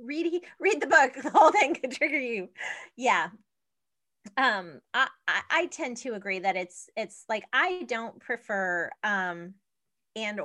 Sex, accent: female, American